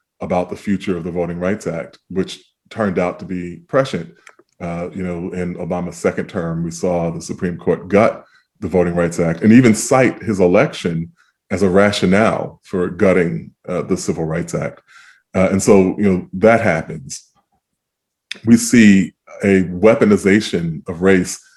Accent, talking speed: American, 165 wpm